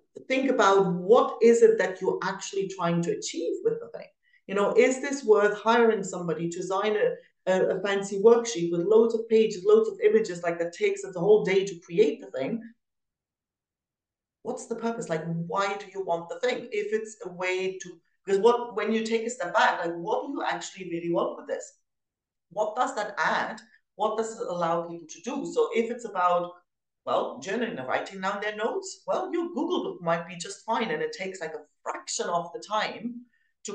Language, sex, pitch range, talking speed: English, female, 175-265 Hz, 210 wpm